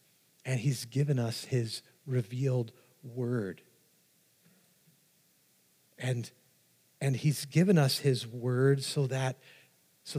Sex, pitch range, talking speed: male, 145-195 Hz, 100 wpm